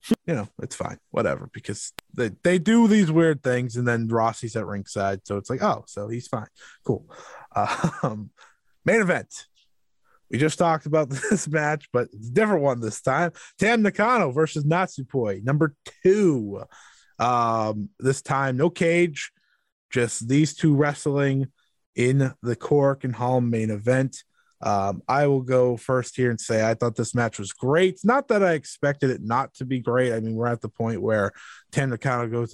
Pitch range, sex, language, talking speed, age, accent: 115-150 Hz, male, English, 180 wpm, 20-39, American